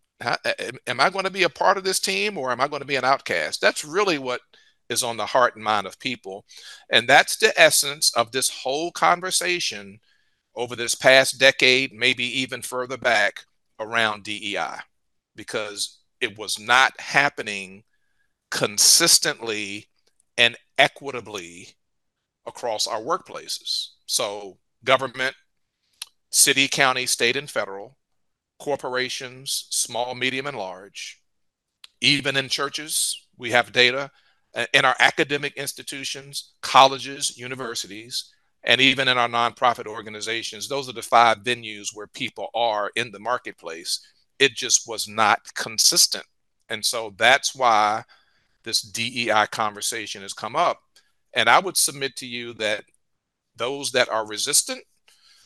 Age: 50-69